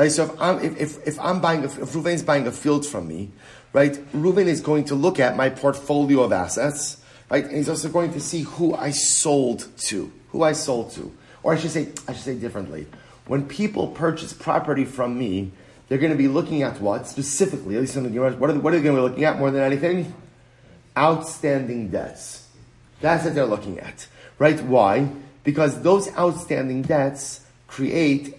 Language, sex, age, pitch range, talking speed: English, male, 30-49, 125-155 Hz, 205 wpm